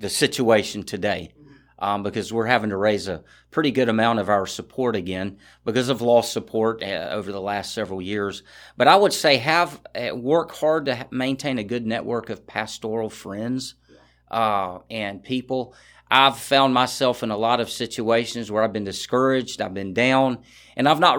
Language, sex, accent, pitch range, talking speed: English, male, American, 105-130 Hz, 180 wpm